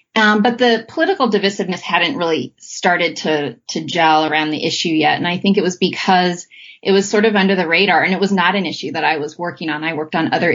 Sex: female